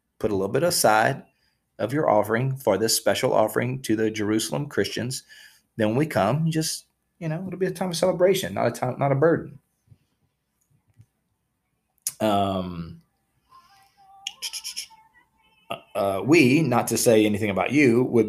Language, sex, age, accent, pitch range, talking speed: English, male, 30-49, American, 110-155 Hz, 145 wpm